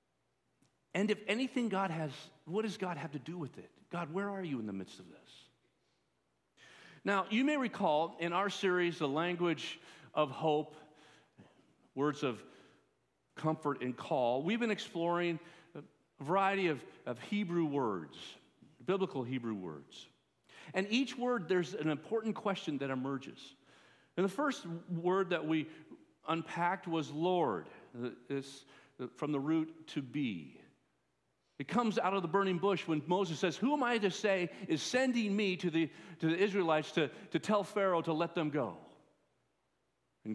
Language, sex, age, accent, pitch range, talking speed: English, male, 50-69, American, 145-195 Hz, 160 wpm